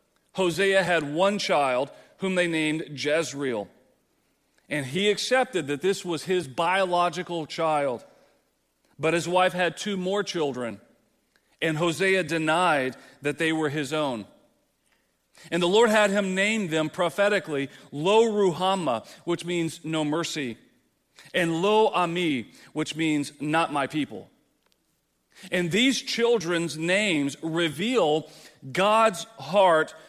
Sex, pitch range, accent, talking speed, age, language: male, 155-210 Hz, American, 120 wpm, 40-59, English